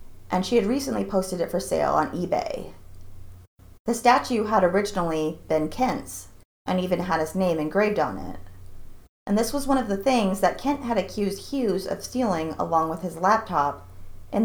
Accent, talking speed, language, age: American, 180 wpm, English, 30-49